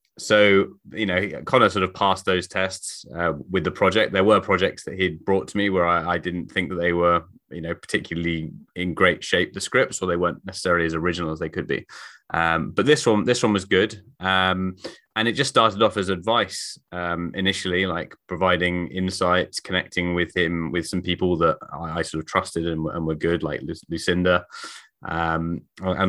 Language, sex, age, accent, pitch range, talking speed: English, male, 20-39, British, 85-100 Hz, 200 wpm